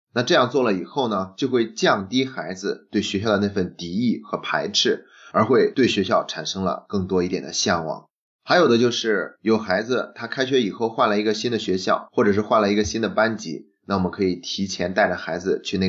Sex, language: male, Chinese